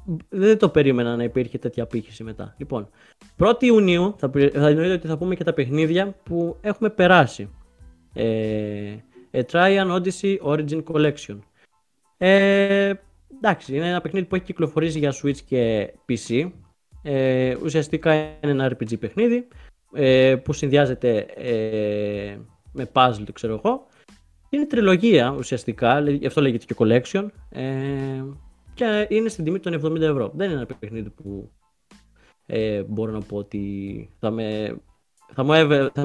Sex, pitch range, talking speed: male, 120-165 Hz, 145 wpm